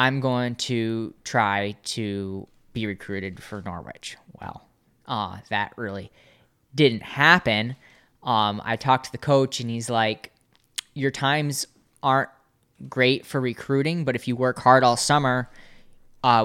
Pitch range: 105-125 Hz